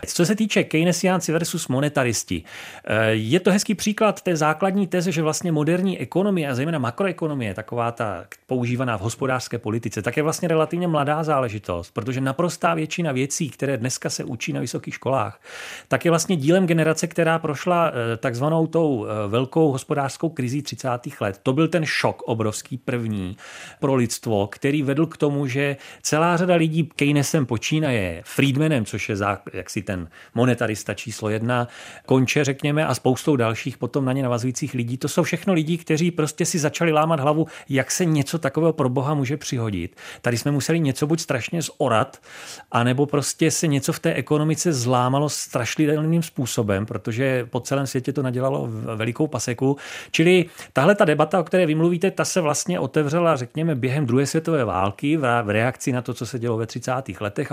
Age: 30-49